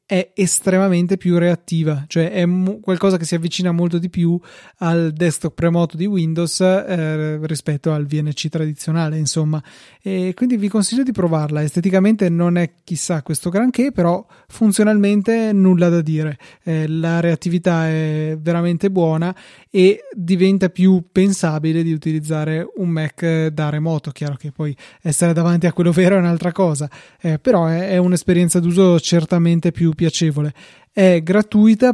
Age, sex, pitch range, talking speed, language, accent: 20-39, male, 160-190 Hz, 150 wpm, Italian, native